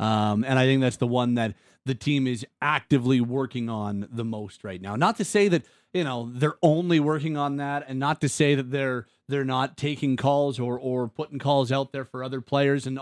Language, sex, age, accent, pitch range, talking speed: English, male, 30-49, American, 125-150 Hz, 225 wpm